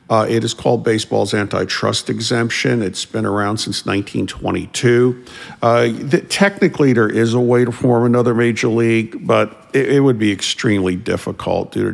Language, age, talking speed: English, 50-69, 160 wpm